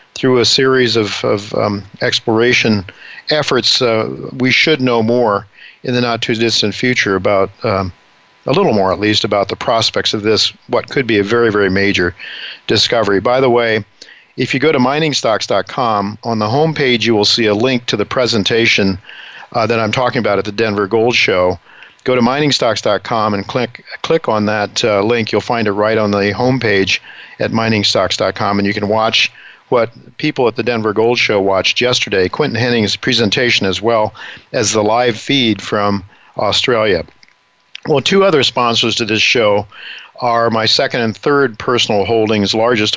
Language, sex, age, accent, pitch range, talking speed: English, male, 50-69, American, 100-120 Hz, 175 wpm